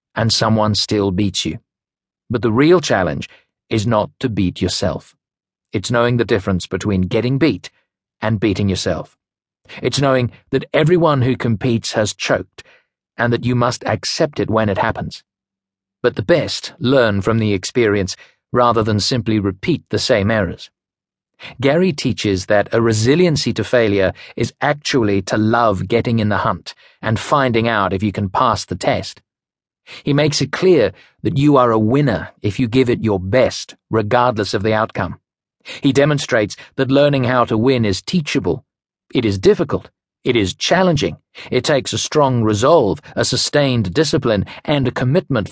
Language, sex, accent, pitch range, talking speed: English, male, British, 105-130 Hz, 165 wpm